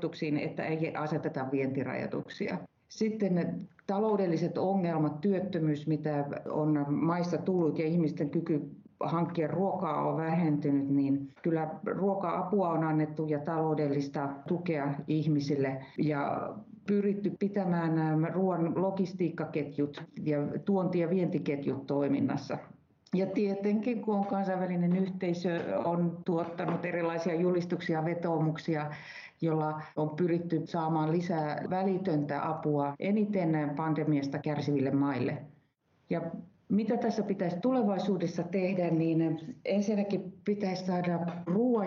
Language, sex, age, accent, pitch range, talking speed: Finnish, female, 50-69, native, 155-190 Hz, 100 wpm